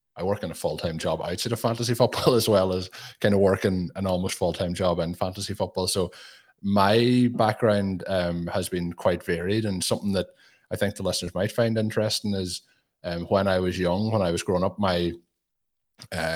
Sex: male